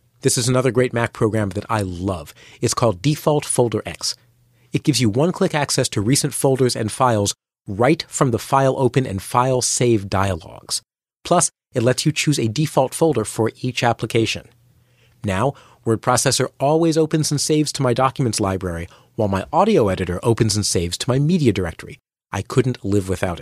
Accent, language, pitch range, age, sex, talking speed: American, English, 110-150 Hz, 40-59, male, 180 wpm